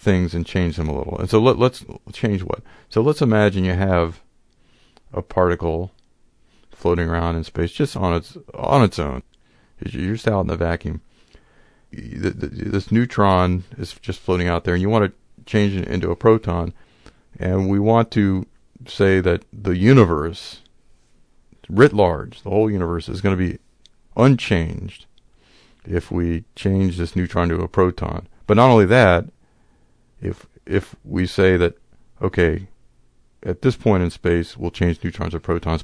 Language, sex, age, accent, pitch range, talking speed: English, male, 50-69, American, 85-105 Hz, 160 wpm